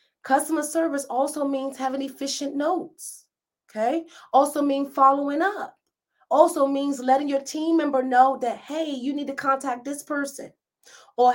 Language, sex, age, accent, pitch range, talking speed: English, female, 30-49, American, 215-275 Hz, 150 wpm